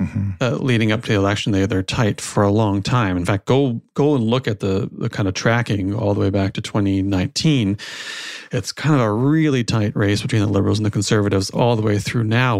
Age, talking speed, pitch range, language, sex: 40-59, 235 wpm, 105-130 Hz, English, male